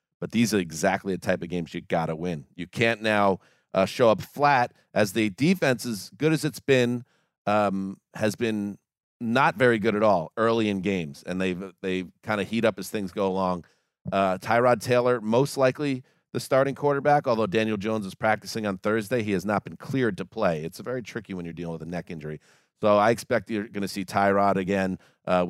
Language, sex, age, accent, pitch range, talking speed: English, male, 40-59, American, 95-115 Hz, 215 wpm